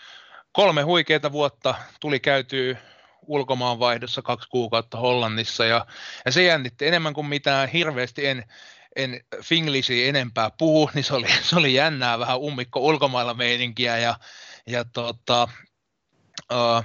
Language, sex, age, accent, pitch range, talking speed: Finnish, male, 30-49, native, 115-145 Hz, 125 wpm